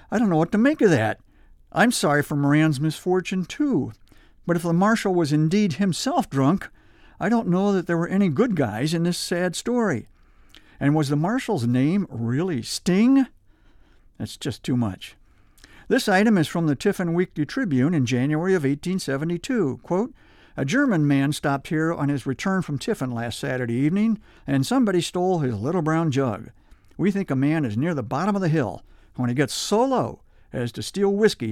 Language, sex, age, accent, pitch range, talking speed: English, male, 50-69, American, 130-185 Hz, 190 wpm